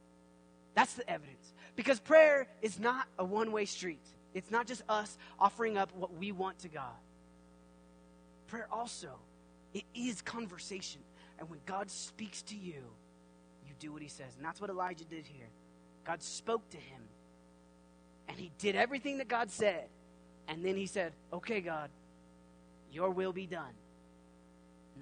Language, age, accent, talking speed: English, 30-49, American, 155 wpm